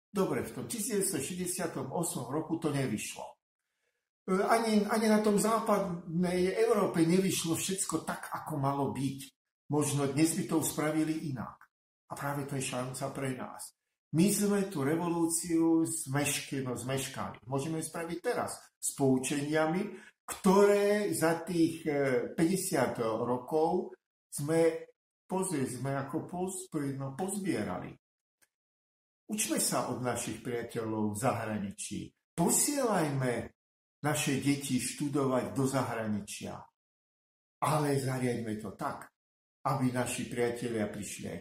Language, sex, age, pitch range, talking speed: Slovak, male, 50-69, 125-165 Hz, 110 wpm